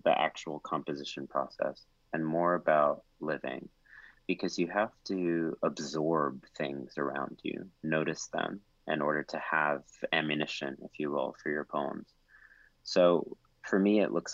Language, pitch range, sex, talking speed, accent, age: English, 75-90 Hz, male, 140 wpm, American, 30-49